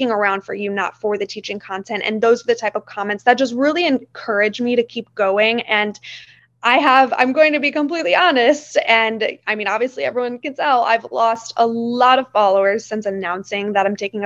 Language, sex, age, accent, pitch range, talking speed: English, female, 20-39, American, 205-240 Hz, 210 wpm